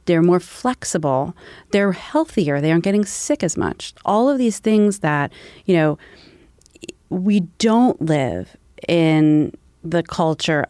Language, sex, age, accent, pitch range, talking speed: English, female, 30-49, American, 150-190 Hz, 135 wpm